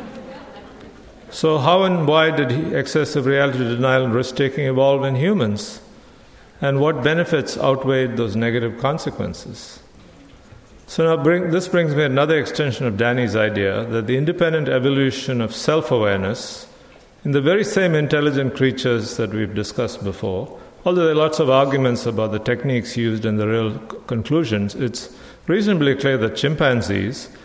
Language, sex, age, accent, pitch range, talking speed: English, male, 50-69, Indian, 120-145 Hz, 145 wpm